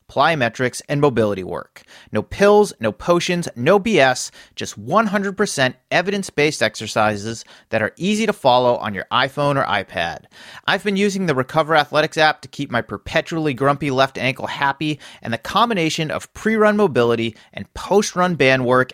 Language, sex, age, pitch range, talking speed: English, male, 30-49, 120-180 Hz, 155 wpm